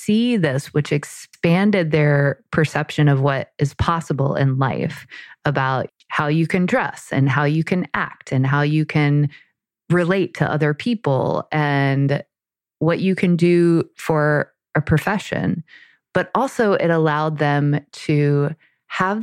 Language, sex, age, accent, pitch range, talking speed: English, female, 20-39, American, 140-170 Hz, 140 wpm